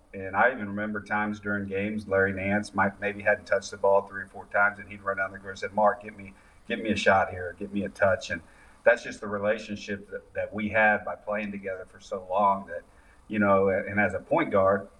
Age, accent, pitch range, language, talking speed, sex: 40-59, American, 95-105 Hz, English, 250 wpm, male